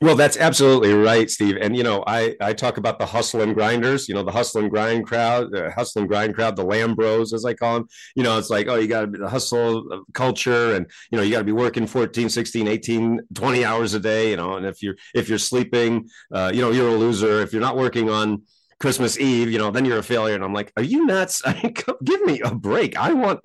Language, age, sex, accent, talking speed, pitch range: English, 30-49, male, American, 255 wpm, 105-130 Hz